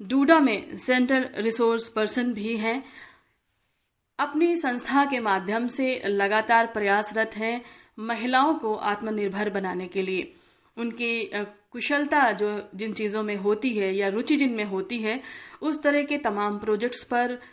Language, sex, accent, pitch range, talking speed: Hindi, female, native, 205-250 Hz, 140 wpm